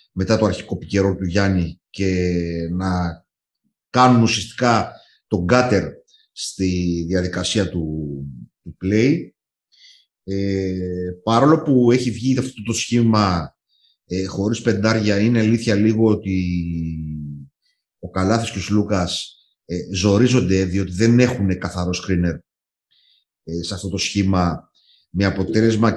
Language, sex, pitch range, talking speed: Greek, male, 90-115 Hz, 120 wpm